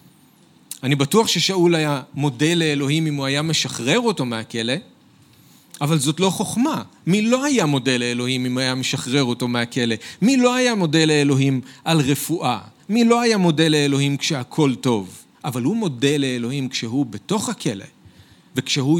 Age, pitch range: 40-59, 130-170 Hz